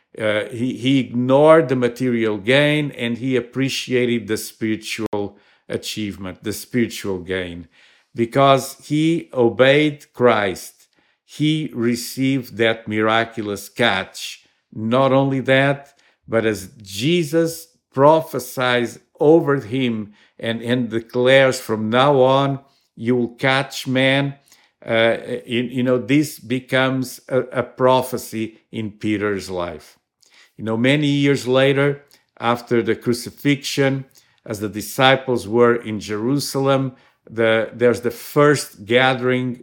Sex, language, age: male, English, 50-69